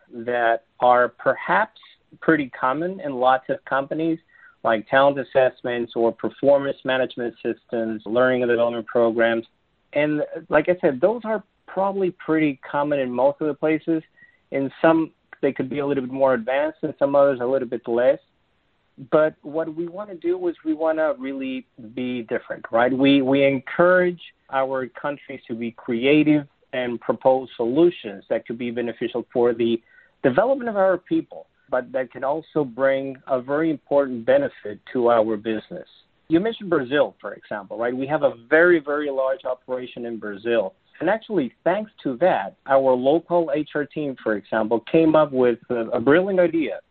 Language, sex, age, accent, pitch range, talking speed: English, male, 40-59, American, 125-165 Hz, 170 wpm